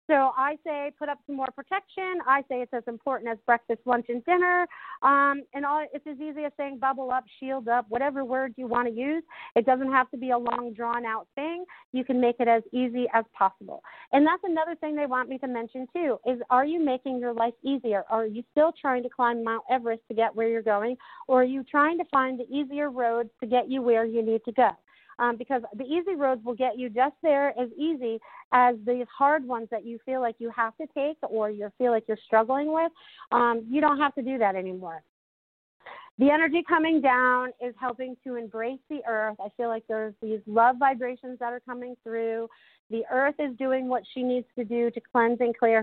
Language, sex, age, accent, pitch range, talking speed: English, female, 40-59, American, 230-275 Hz, 225 wpm